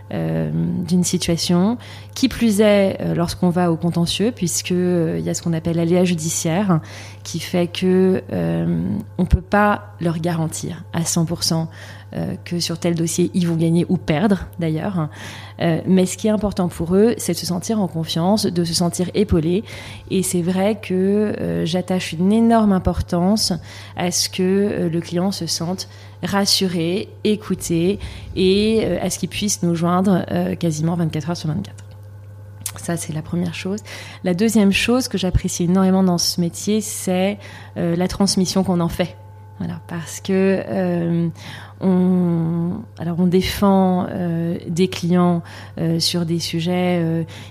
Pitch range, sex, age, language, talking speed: 165-185 Hz, female, 30-49, French, 160 wpm